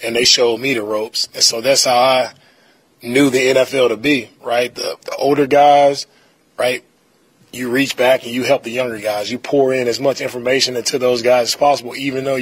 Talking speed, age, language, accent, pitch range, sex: 215 wpm, 20-39, English, American, 120-140 Hz, male